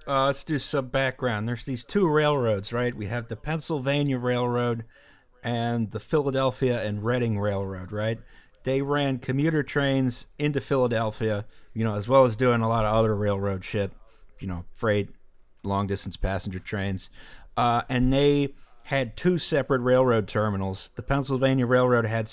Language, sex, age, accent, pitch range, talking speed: English, male, 40-59, American, 105-130 Hz, 160 wpm